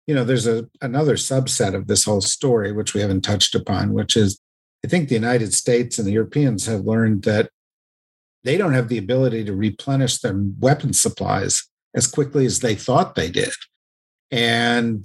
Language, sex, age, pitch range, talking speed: English, male, 50-69, 105-130 Hz, 185 wpm